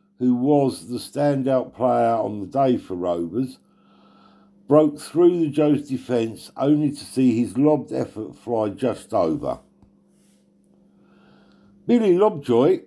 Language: English